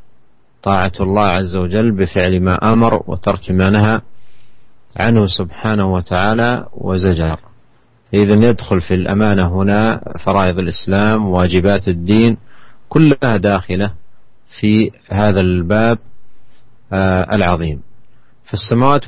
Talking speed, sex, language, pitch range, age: 90 wpm, male, Indonesian, 95-120 Hz, 40-59